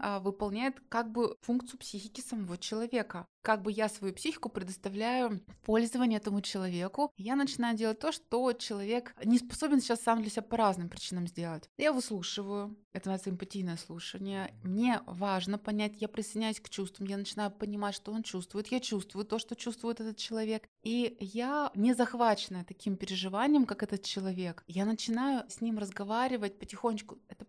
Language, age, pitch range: Russian, 20-39, 185-230 Hz